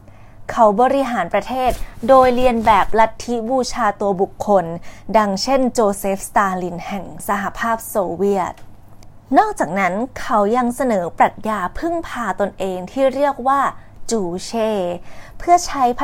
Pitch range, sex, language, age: 195-270 Hz, female, Thai, 20-39